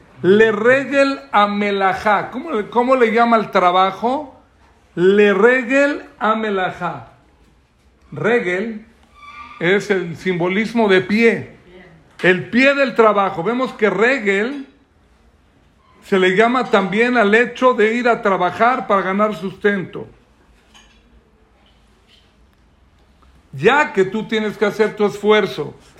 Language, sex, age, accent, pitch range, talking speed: Spanish, male, 60-79, Mexican, 180-240 Hz, 110 wpm